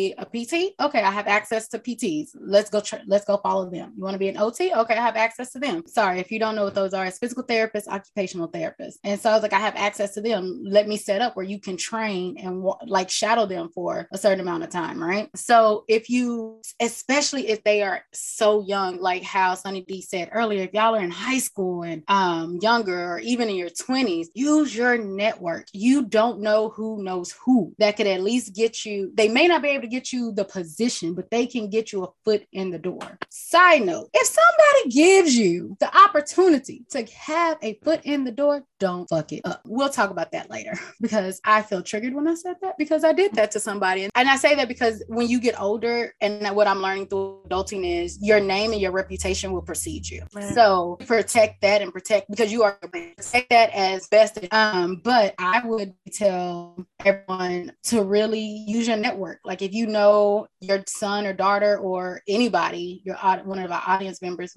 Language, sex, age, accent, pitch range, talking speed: English, female, 20-39, American, 190-235 Hz, 220 wpm